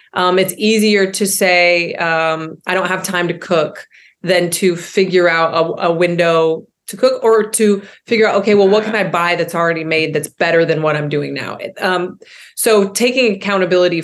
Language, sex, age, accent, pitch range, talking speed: English, female, 30-49, American, 170-215 Hz, 190 wpm